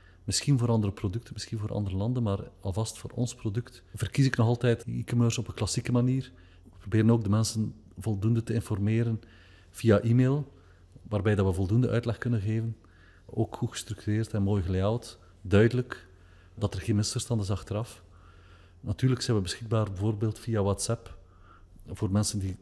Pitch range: 95-115 Hz